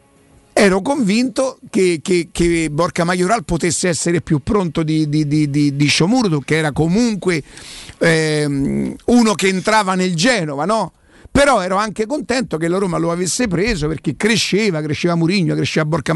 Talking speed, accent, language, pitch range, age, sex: 160 wpm, native, Italian, 145-185 Hz, 50-69, male